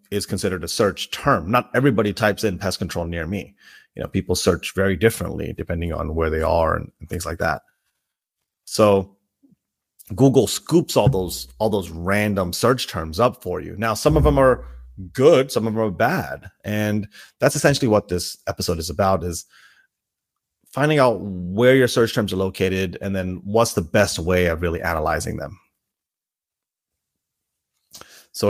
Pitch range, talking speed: 90-115 Hz, 170 wpm